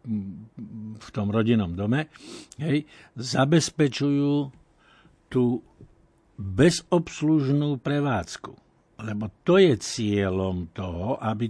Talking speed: 80 wpm